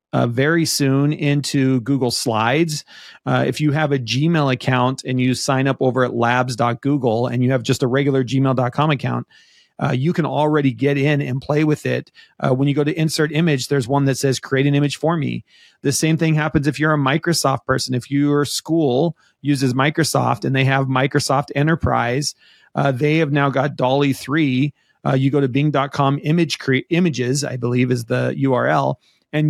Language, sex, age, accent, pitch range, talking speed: English, male, 30-49, American, 130-155 Hz, 185 wpm